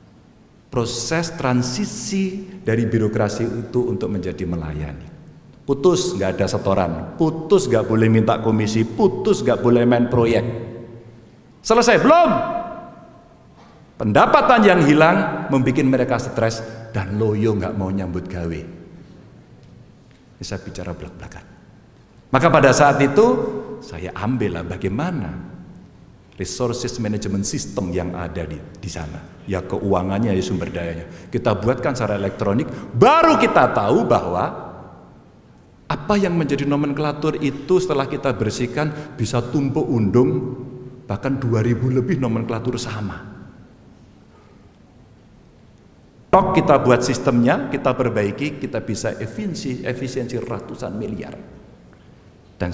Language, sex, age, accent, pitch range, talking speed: Indonesian, male, 50-69, native, 100-140 Hz, 110 wpm